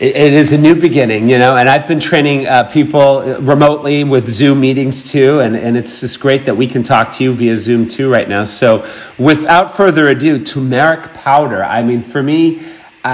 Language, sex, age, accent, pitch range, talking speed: English, male, 40-59, American, 120-150 Hz, 205 wpm